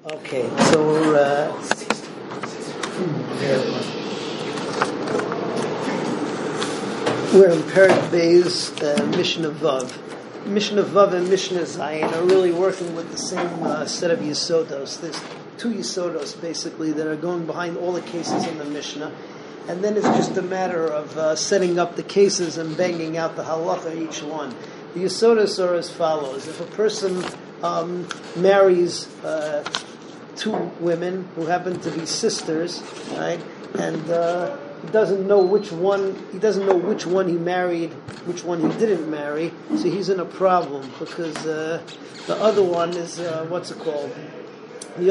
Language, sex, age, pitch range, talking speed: English, male, 50-69, 160-190 Hz, 150 wpm